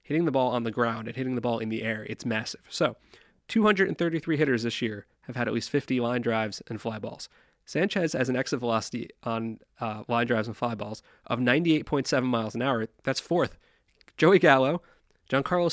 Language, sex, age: English, male, 30-49